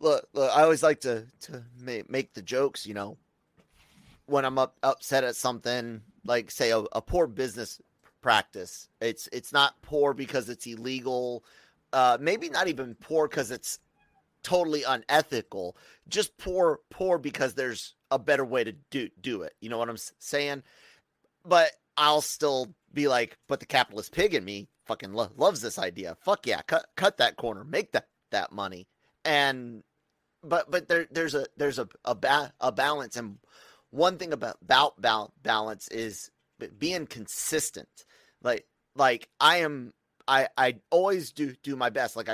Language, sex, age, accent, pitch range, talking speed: English, male, 30-49, American, 115-150 Hz, 165 wpm